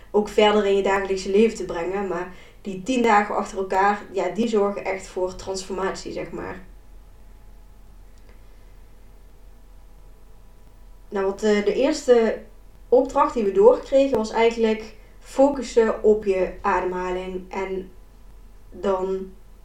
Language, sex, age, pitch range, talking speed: Dutch, female, 20-39, 185-220 Hz, 120 wpm